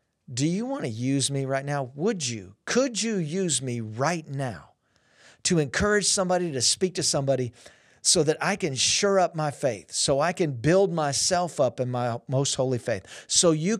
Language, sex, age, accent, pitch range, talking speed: English, male, 50-69, American, 125-155 Hz, 190 wpm